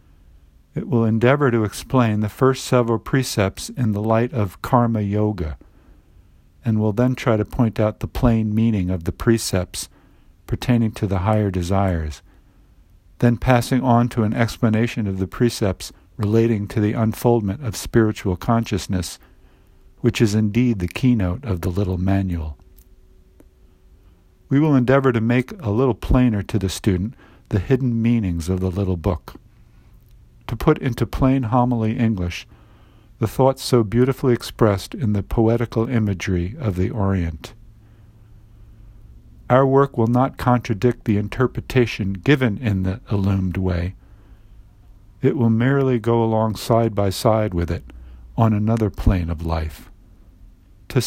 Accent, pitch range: American, 95-120 Hz